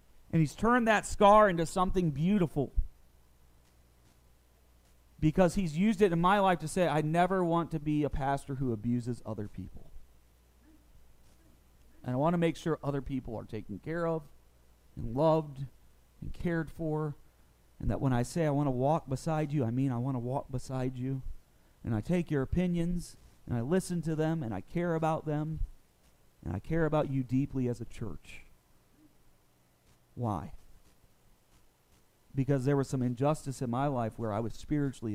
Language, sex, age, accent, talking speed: English, male, 40-59, American, 170 wpm